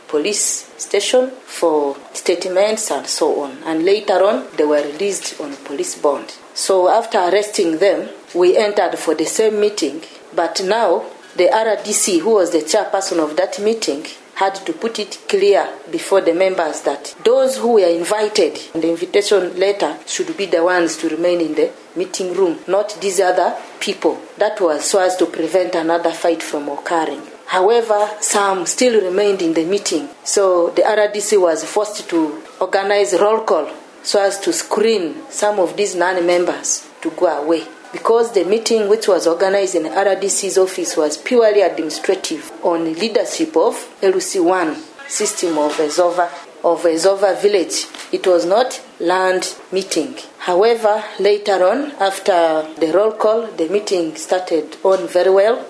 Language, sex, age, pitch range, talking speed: English, female, 40-59, 170-215 Hz, 160 wpm